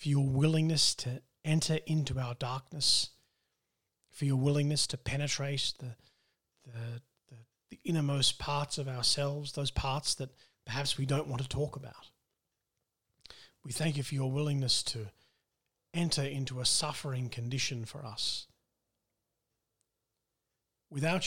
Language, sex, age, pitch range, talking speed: English, male, 40-59, 120-145 Hz, 130 wpm